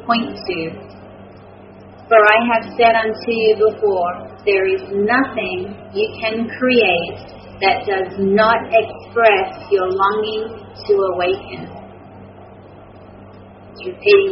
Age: 40-59